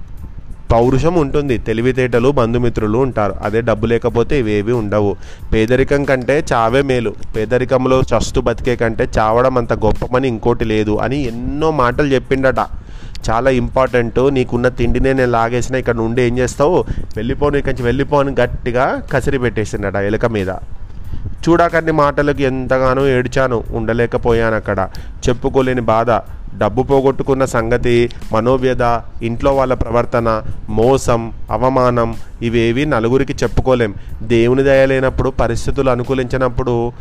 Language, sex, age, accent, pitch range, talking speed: Telugu, male, 30-49, native, 110-130 Hz, 110 wpm